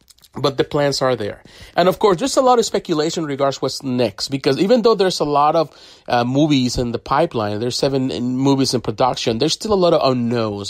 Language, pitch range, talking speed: English, 115-145 Hz, 230 wpm